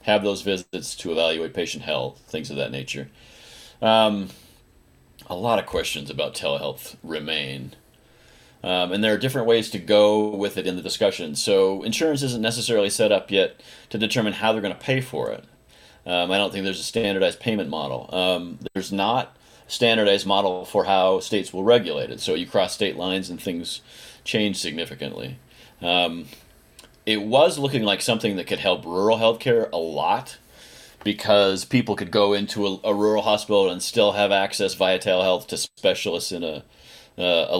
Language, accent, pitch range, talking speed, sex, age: English, American, 90-105 Hz, 180 wpm, male, 40-59